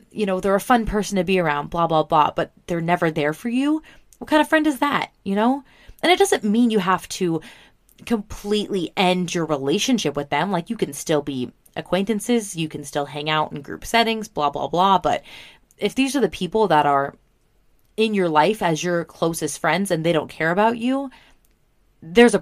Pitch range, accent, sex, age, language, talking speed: 160-220 Hz, American, female, 20-39, English, 210 wpm